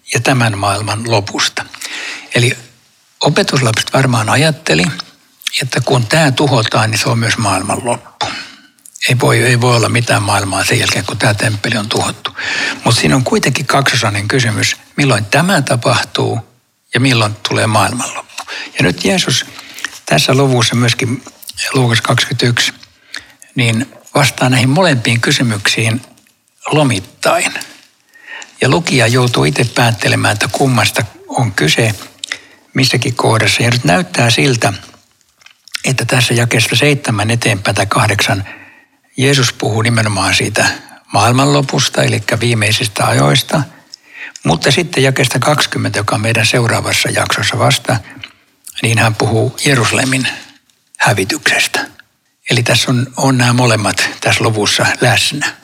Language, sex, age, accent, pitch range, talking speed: Finnish, male, 60-79, native, 115-135 Hz, 120 wpm